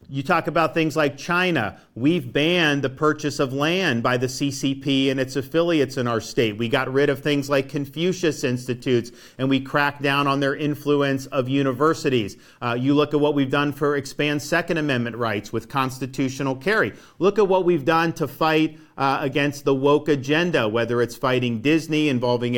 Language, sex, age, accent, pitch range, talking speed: English, male, 50-69, American, 125-150 Hz, 185 wpm